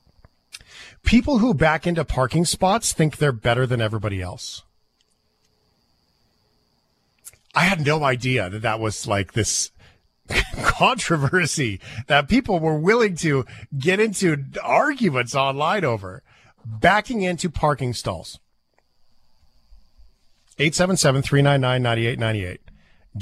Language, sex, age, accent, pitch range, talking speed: English, male, 40-59, American, 110-150 Hz, 95 wpm